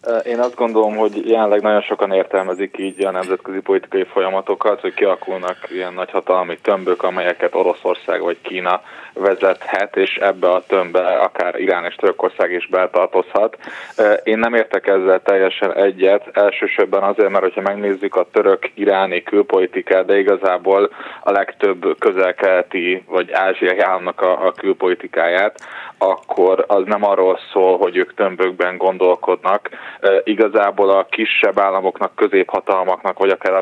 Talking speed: 135 wpm